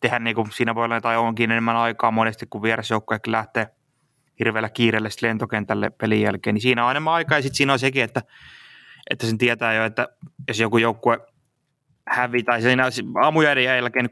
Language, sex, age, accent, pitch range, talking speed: Finnish, male, 20-39, native, 110-120 Hz, 175 wpm